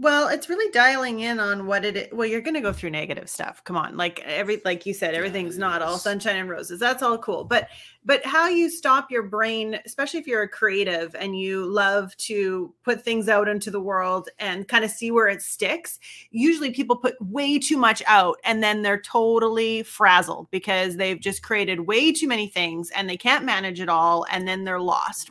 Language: English